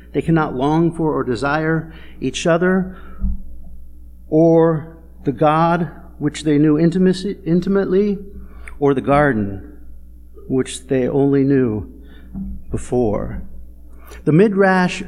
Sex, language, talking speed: male, English, 105 wpm